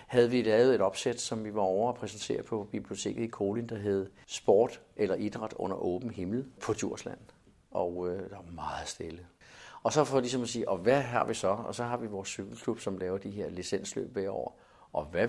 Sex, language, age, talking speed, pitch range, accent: male, Danish, 50-69, 230 wpm, 95-115 Hz, native